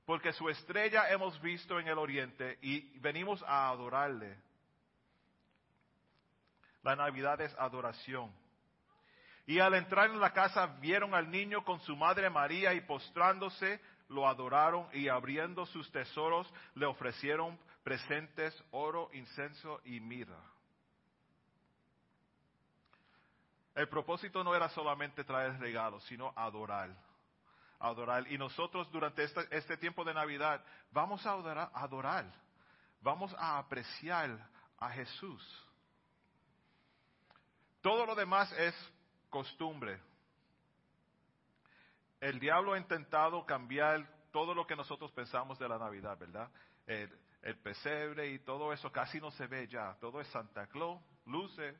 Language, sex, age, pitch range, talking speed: Spanish, male, 40-59, 130-170 Hz, 120 wpm